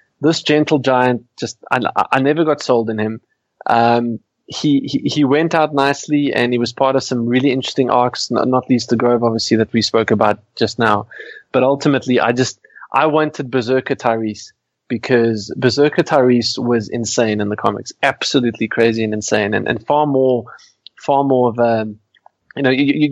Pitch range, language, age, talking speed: 115-140 Hz, English, 20-39, 180 wpm